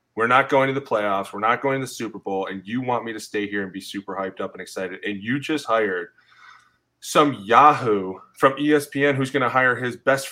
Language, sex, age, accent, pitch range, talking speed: English, male, 20-39, American, 105-140 Hz, 240 wpm